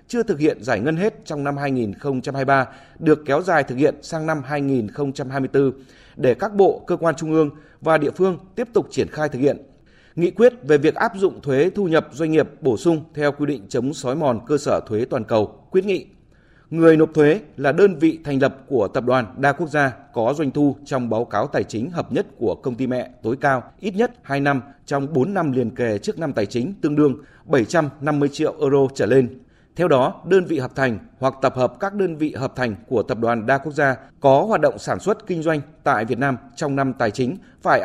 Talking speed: 230 wpm